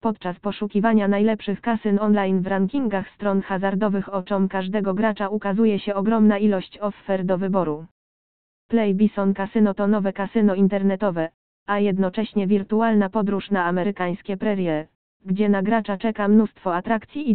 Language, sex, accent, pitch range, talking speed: Polish, female, native, 190-210 Hz, 140 wpm